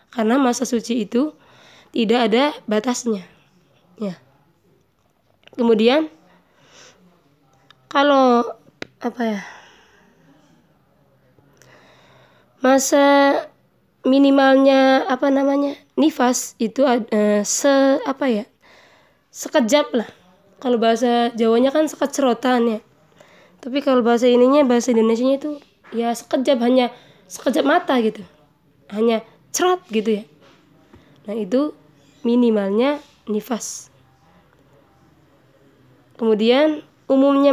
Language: Indonesian